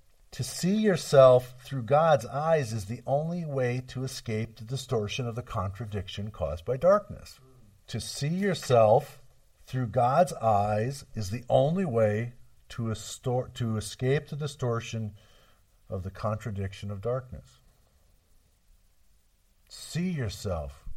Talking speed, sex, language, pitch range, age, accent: 120 wpm, male, English, 95-125 Hz, 50-69, American